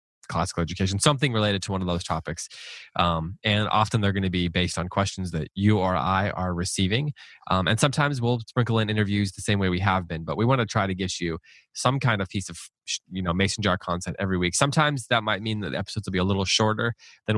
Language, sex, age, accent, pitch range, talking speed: English, male, 20-39, American, 85-110 Hz, 245 wpm